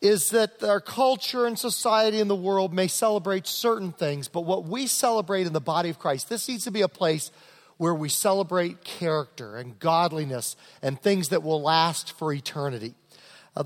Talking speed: 185 wpm